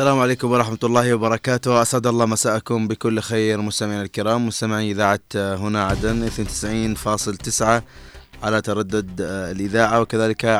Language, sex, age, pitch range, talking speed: Arabic, male, 20-39, 100-115 Hz, 120 wpm